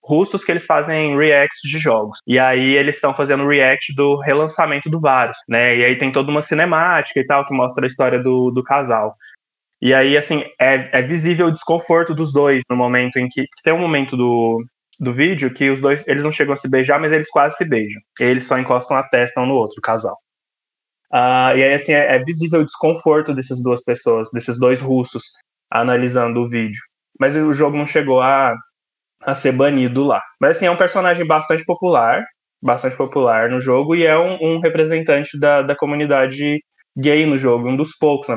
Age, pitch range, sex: 20-39, 125-155 Hz, male